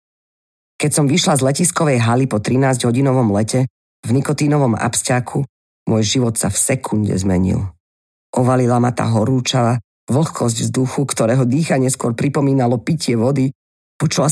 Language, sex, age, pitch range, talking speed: Slovak, female, 40-59, 105-145 Hz, 130 wpm